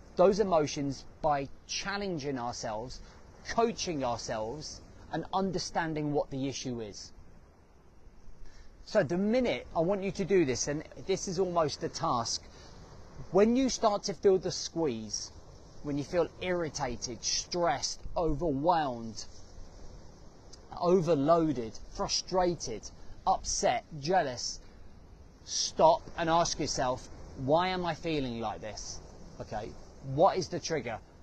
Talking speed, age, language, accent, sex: 115 wpm, 20-39, English, British, male